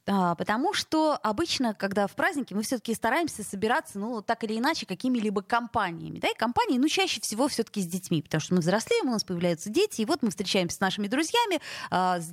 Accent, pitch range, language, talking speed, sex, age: native, 185-245 Hz, Russian, 200 wpm, female, 20-39